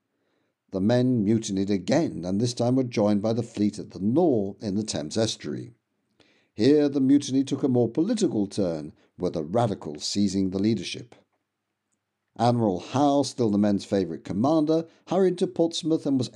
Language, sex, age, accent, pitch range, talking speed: English, male, 60-79, British, 100-150 Hz, 165 wpm